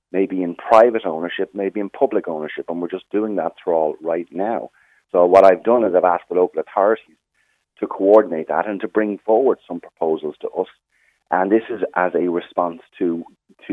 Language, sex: English, male